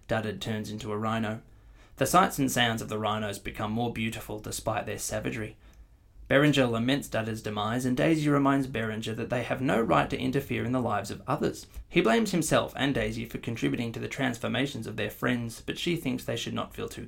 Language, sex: English, male